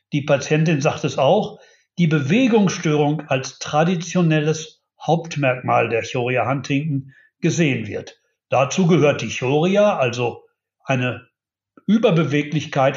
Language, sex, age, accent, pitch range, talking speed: German, male, 60-79, German, 155-195 Hz, 100 wpm